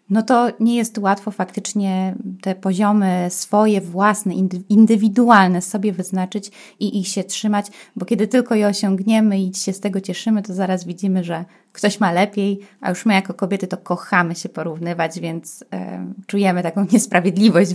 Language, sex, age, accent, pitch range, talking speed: Polish, female, 20-39, native, 185-215 Hz, 160 wpm